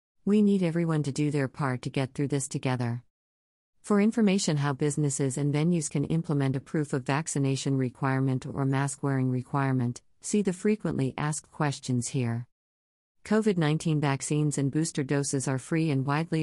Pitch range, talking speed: 130-160 Hz, 160 wpm